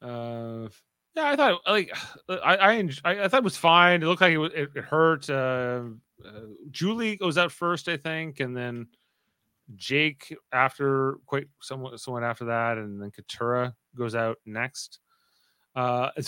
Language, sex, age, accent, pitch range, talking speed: English, male, 30-49, American, 115-160 Hz, 160 wpm